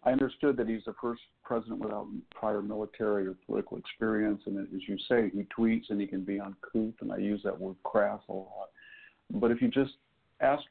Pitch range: 100-120 Hz